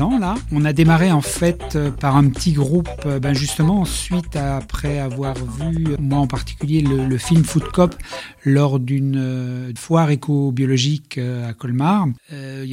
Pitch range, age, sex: 135-160 Hz, 40-59, male